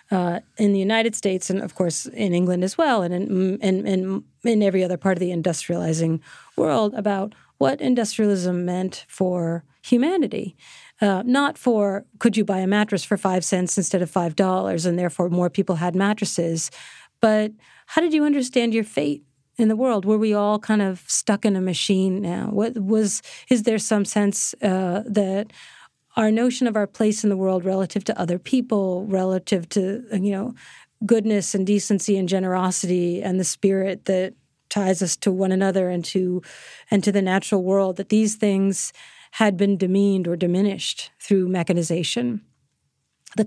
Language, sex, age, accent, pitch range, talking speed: English, female, 40-59, American, 185-215 Hz, 175 wpm